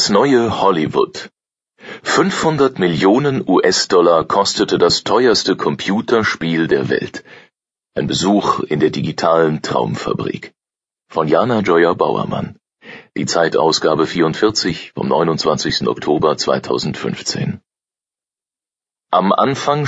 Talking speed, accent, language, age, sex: 95 wpm, German, German, 40-59, male